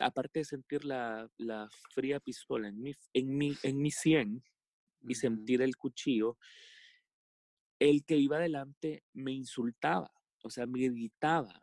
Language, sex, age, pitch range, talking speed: Spanish, male, 30-49, 115-150 Hz, 145 wpm